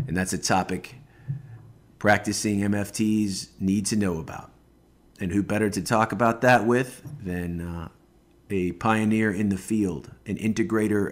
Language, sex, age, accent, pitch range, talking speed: English, male, 50-69, American, 95-120 Hz, 145 wpm